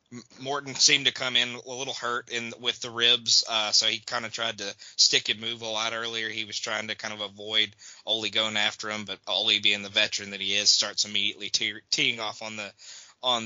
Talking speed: 230 wpm